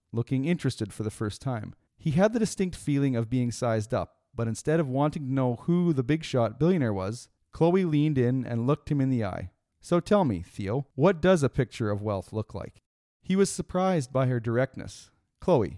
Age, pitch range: 40-59, 115-155 Hz